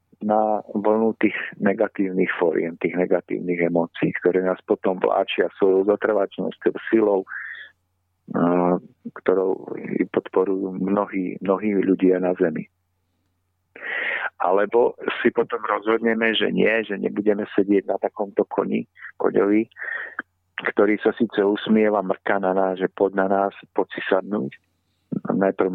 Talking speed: 115 wpm